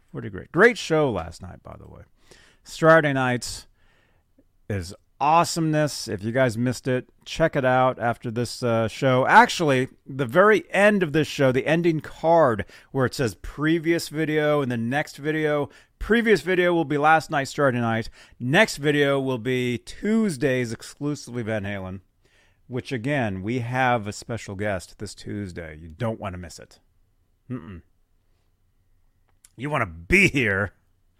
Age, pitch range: 40-59, 100-160 Hz